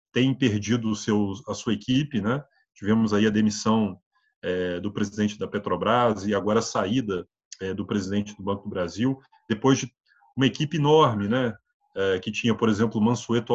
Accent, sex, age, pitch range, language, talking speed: Brazilian, male, 30-49, 105-145 Hz, Portuguese, 155 wpm